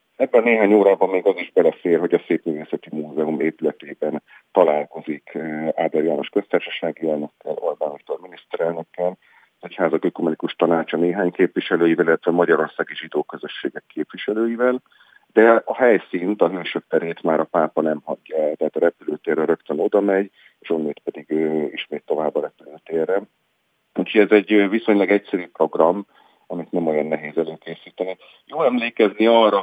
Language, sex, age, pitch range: Hungarian, male, 40-59, 80-100 Hz